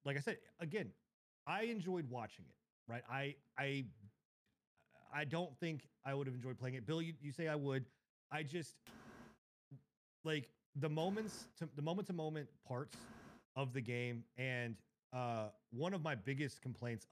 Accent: American